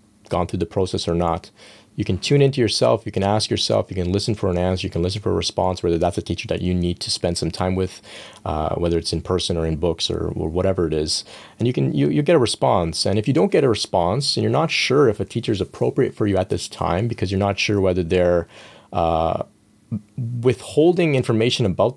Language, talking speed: English, 250 wpm